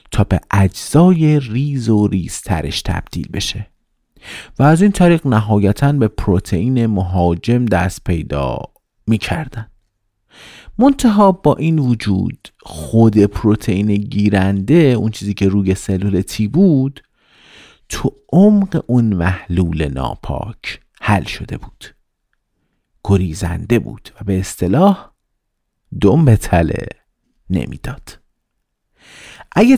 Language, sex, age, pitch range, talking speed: Persian, male, 50-69, 95-135 Hz, 105 wpm